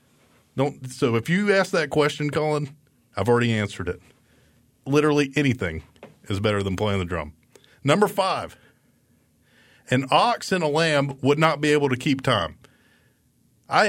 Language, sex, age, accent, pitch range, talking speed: English, male, 40-59, American, 115-140 Hz, 145 wpm